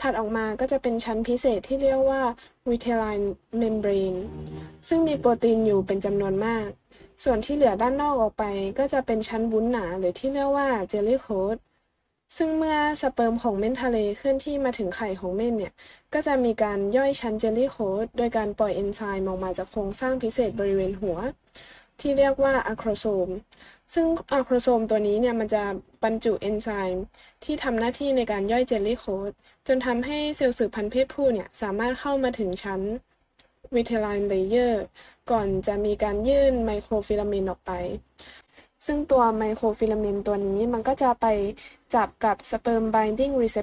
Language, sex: Thai, female